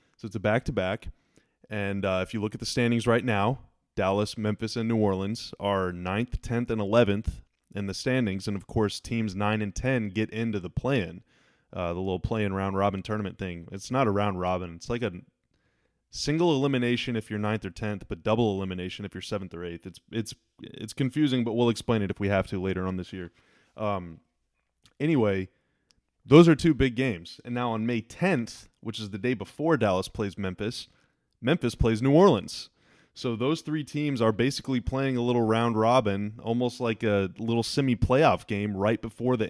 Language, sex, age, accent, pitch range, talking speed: English, male, 20-39, American, 100-125 Hz, 195 wpm